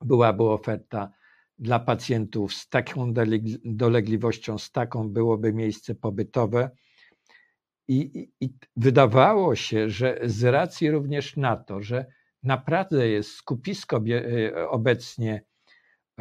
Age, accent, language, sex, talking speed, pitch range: 50-69, native, Polish, male, 105 wpm, 110-140 Hz